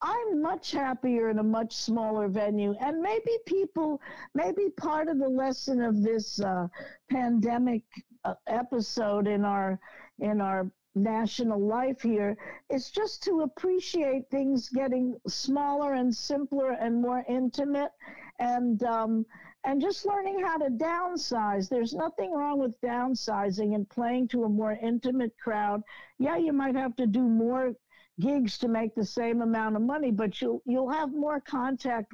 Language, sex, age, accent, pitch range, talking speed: English, female, 50-69, American, 210-275 Hz, 155 wpm